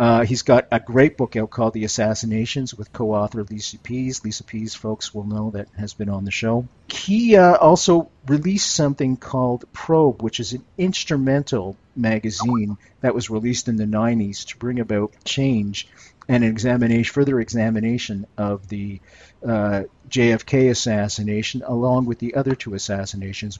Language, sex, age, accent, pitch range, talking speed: English, male, 50-69, American, 105-125 Hz, 155 wpm